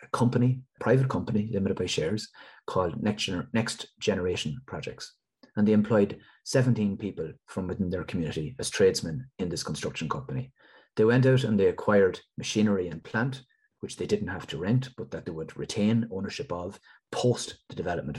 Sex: male